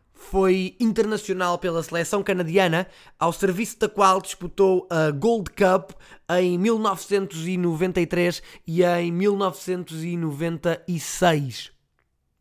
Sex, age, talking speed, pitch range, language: male, 20-39, 85 wpm, 155-190 Hz, Portuguese